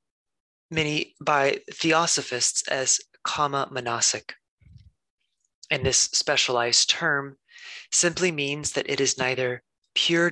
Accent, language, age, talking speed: American, English, 30-49, 100 wpm